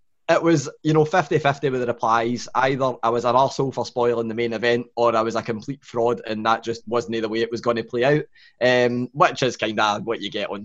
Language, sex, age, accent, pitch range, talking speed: English, male, 10-29, British, 120-155 Hz, 255 wpm